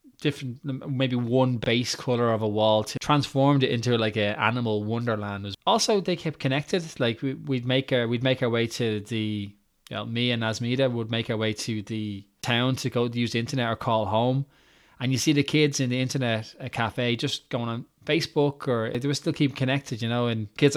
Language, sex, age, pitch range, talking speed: English, male, 20-39, 115-145 Hz, 220 wpm